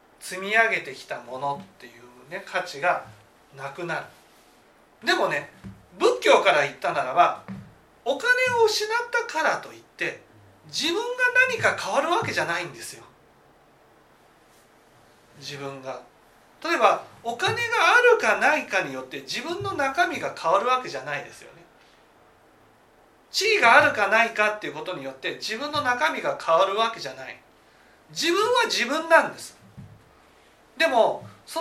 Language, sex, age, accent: Japanese, male, 40-59, native